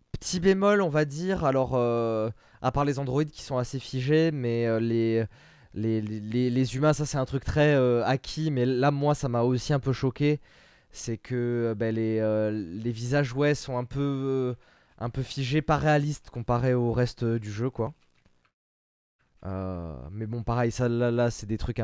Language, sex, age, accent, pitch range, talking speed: French, male, 20-39, French, 110-140 Hz, 195 wpm